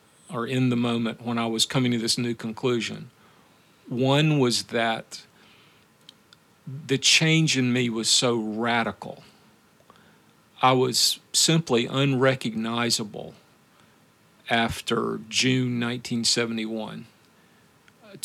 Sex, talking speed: male, 95 wpm